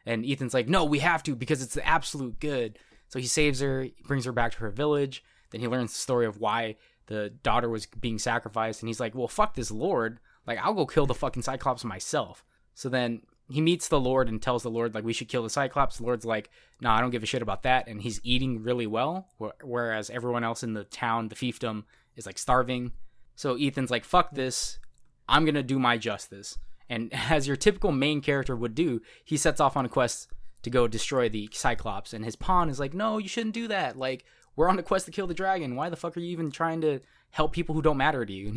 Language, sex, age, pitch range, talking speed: English, male, 20-39, 115-155 Hz, 240 wpm